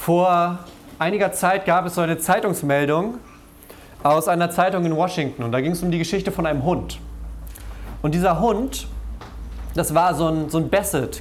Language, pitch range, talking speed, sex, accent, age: German, 160-215 Hz, 175 wpm, male, German, 30-49